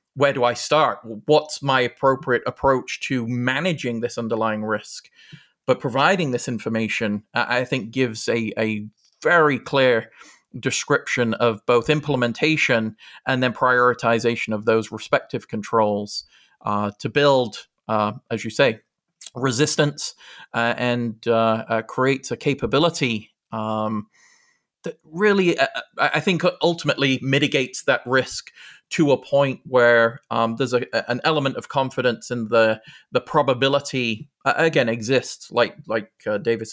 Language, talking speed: English, 135 wpm